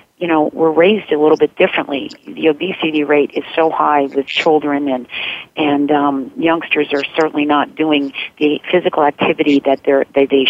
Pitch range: 140-160 Hz